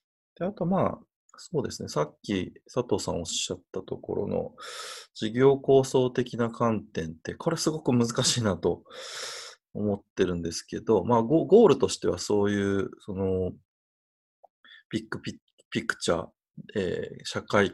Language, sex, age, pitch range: Japanese, male, 20-39, 105-170 Hz